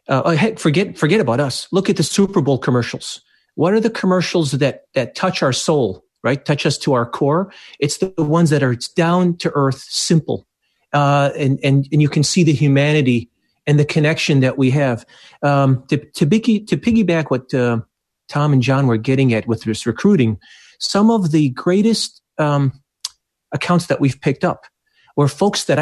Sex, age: male, 40-59